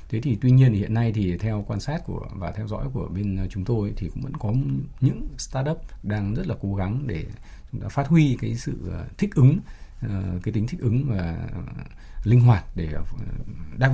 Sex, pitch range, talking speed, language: male, 95-125 Hz, 200 wpm, Vietnamese